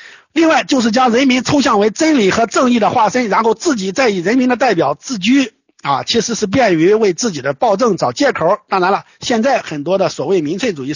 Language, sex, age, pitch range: Chinese, male, 50-69, 185-270 Hz